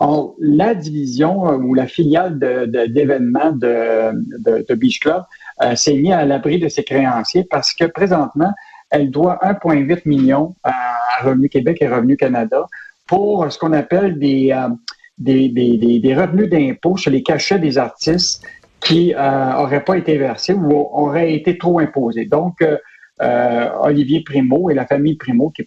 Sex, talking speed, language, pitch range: male, 175 wpm, French, 135-175 Hz